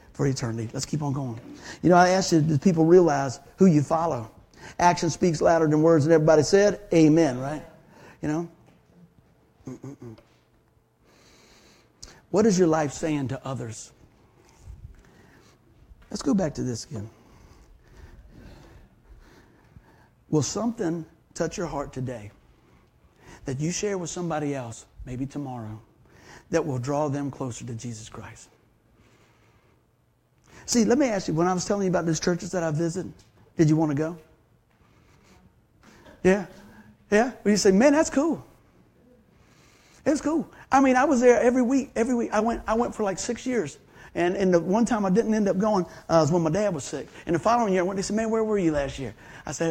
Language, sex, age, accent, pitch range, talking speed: English, male, 60-79, American, 120-185 Hz, 175 wpm